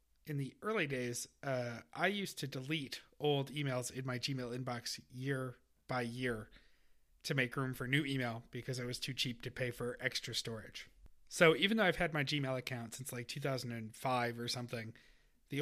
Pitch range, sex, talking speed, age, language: 110-140 Hz, male, 185 wpm, 40-59, English